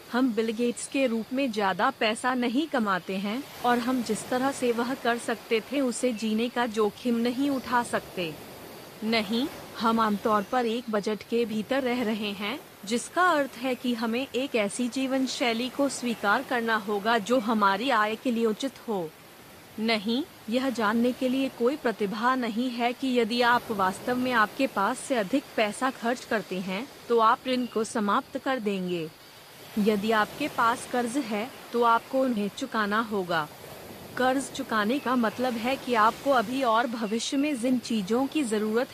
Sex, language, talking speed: female, Hindi, 170 wpm